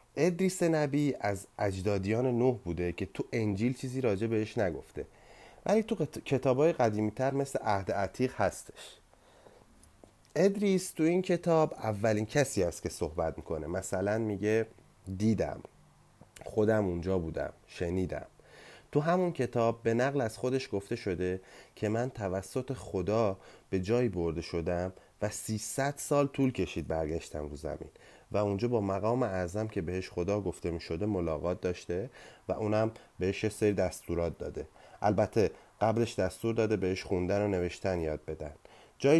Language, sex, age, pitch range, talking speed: Persian, male, 30-49, 90-120 Hz, 145 wpm